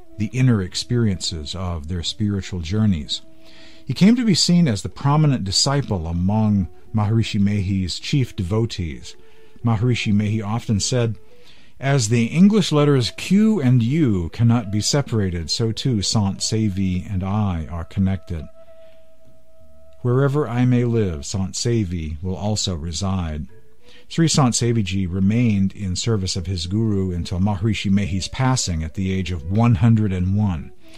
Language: English